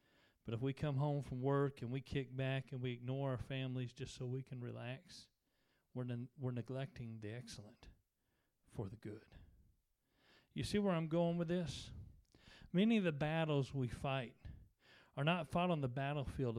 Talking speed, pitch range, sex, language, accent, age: 175 wpm, 115-140 Hz, male, English, American, 40-59